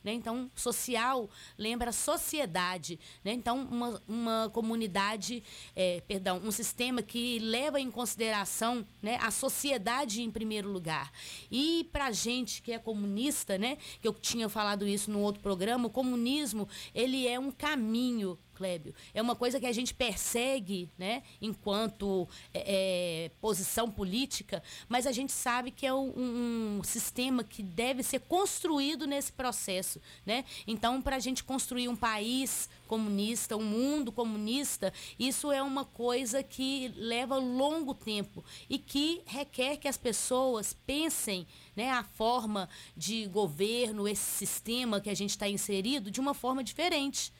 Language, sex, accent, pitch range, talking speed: Portuguese, female, Brazilian, 205-260 Hz, 145 wpm